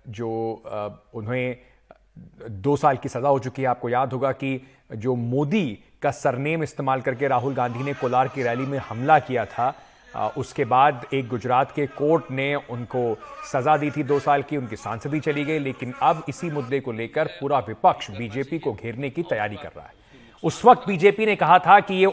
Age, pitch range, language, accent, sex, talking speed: 40-59, 135-185 Hz, Hindi, native, male, 200 wpm